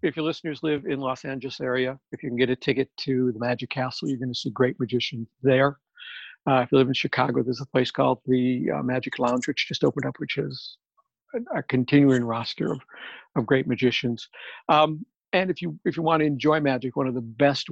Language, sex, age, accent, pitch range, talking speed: English, male, 60-79, American, 125-140 Hz, 220 wpm